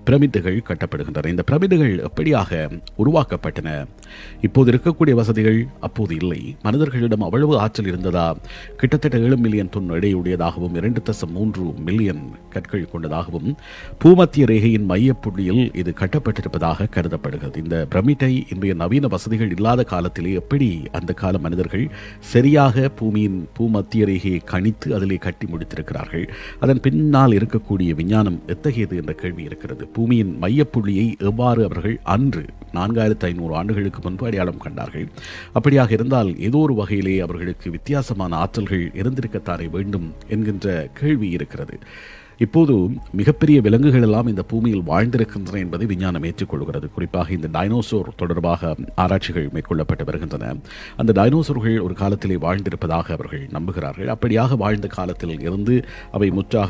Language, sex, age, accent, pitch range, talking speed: Tamil, male, 50-69, native, 90-115 Hz, 120 wpm